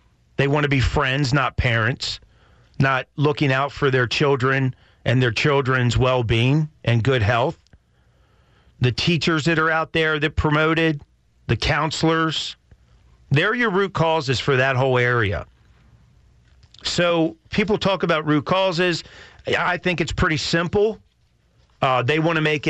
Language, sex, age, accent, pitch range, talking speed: English, male, 40-59, American, 120-165 Hz, 145 wpm